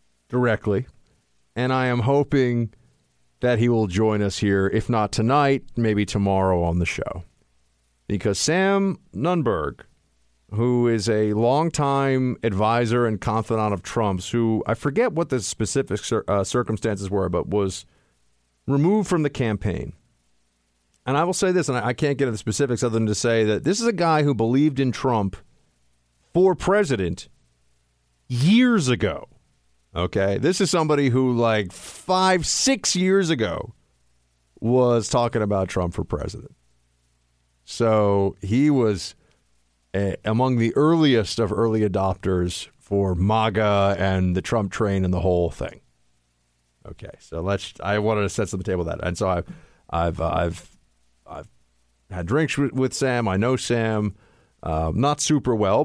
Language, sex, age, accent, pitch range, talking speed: English, male, 40-59, American, 85-125 Hz, 150 wpm